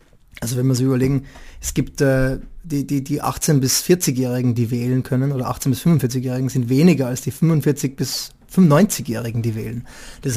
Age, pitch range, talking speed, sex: 20-39, 125-145 Hz, 185 wpm, male